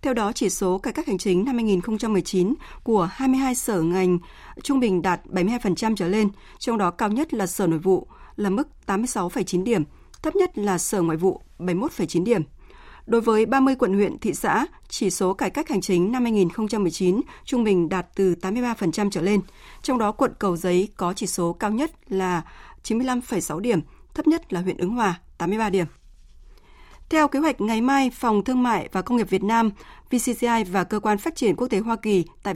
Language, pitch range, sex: Vietnamese, 185-240 Hz, female